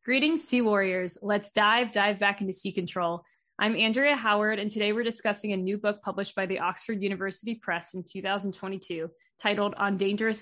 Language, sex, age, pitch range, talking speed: English, female, 20-39, 185-220 Hz, 180 wpm